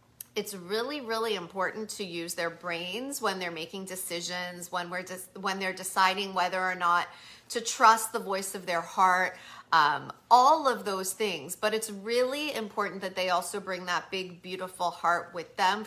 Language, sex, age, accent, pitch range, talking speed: English, female, 40-59, American, 180-215 Hz, 170 wpm